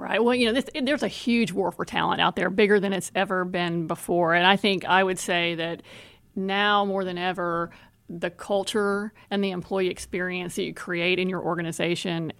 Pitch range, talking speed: 175-205 Hz, 205 wpm